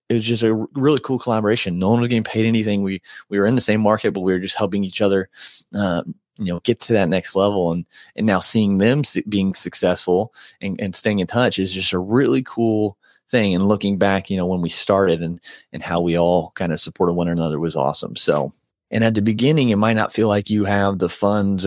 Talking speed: 240 wpm